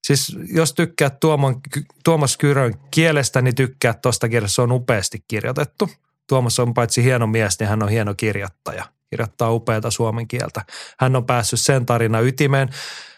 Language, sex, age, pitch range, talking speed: Finnish, male, 30-49, 115-145 Hz, 155 wpm